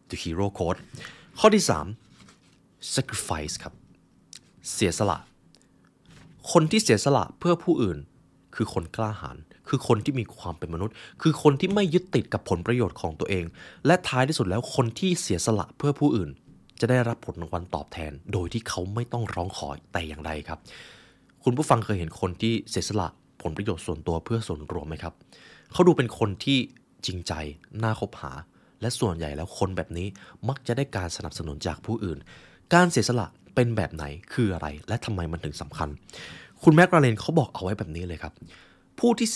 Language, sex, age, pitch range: Thai, male, 20-39, 85-125 Hz